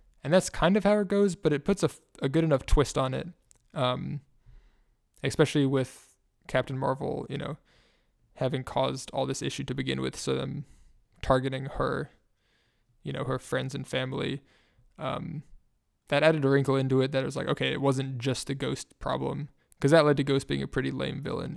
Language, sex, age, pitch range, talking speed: English, male, 20-39, 130-150 Hz, 195 wpm